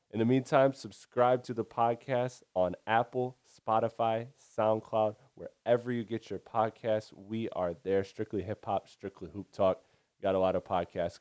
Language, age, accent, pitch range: English, 20-39, American, 90-110 Hz